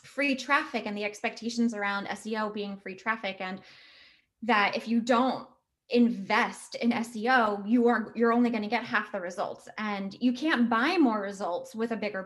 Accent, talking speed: American, 180 wpm